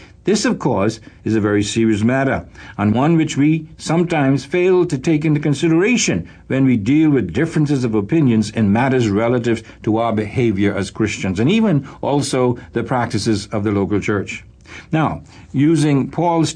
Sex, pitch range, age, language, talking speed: male, 110-150 Hz, 60-79, English, 165 wpm